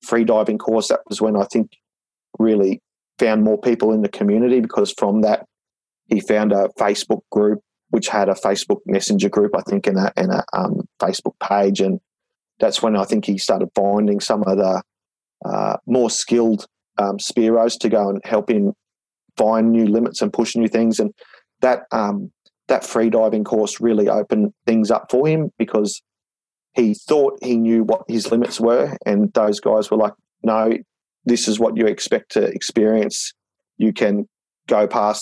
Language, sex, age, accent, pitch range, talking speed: English, male, 30-49, Australian, 100-115 Hz, 180 wpm